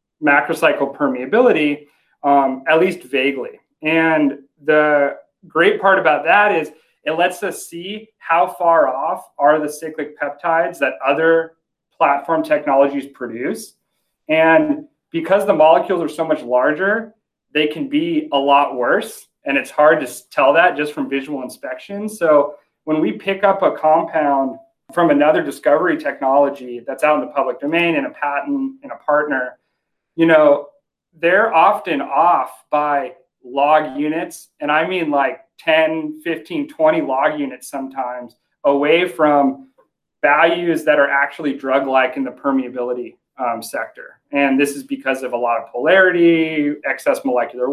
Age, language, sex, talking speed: 30-49, English, male, 145 wpm